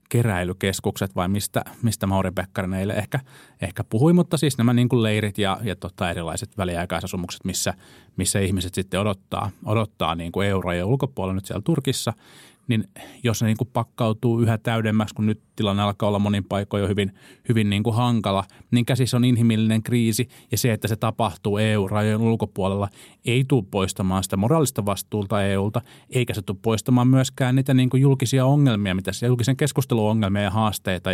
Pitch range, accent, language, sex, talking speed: 95-120 Hz, native, Finnish, male, 175 wpm